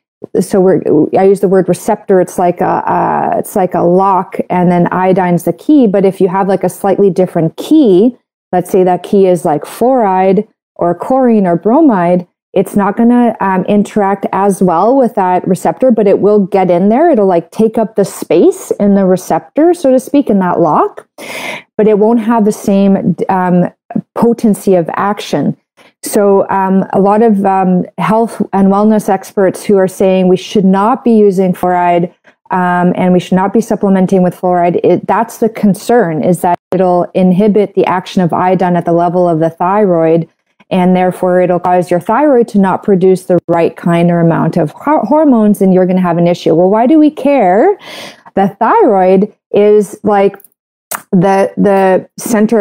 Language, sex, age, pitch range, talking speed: English, female, 30-49, 180-215 Hz, 185 wpm